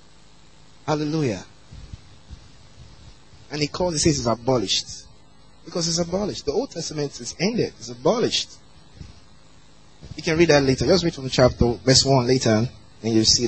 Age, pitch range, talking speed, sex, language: 20-39, 105-165 Hz, 150 wpm, male, English